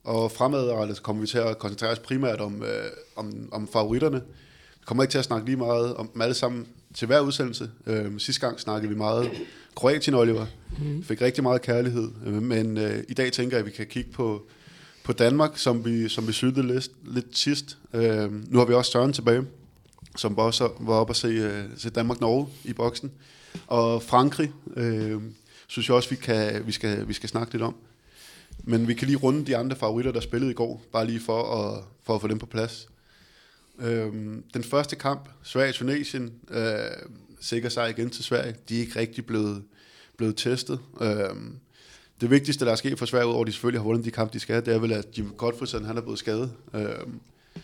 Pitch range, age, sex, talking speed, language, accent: 110-125 Hz, 20-39, male, 210 wpm, Danish, native